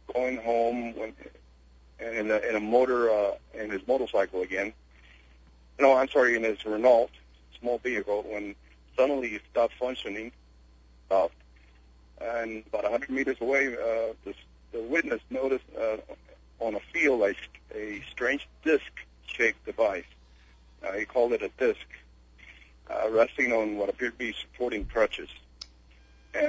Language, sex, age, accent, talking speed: English, male, 50-69, American, 145 wpm